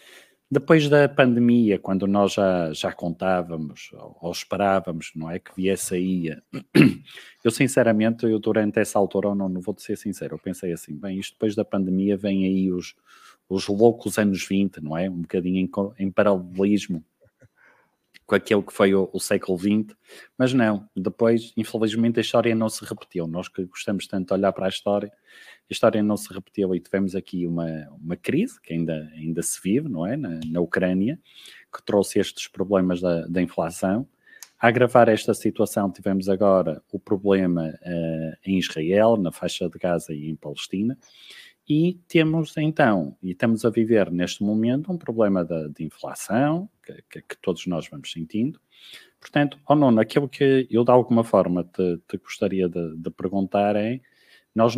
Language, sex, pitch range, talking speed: Portuguese, male, 90-115 Hz, 175 wpm